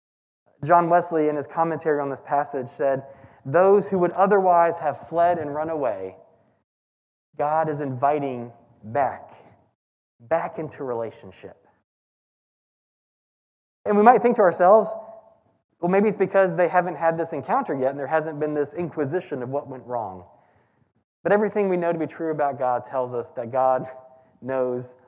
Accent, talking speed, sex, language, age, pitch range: American, 155 wpm, male, English, 20-39, 125-170 Hz